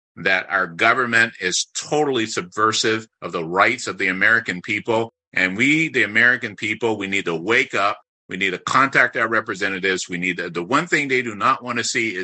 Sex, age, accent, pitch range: male, 50-69, American, 110-135 Hz